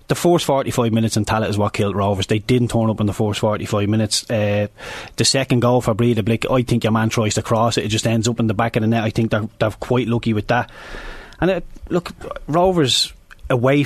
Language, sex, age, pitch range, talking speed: English, male, 30-49, 110-135 Hz, 255 wpm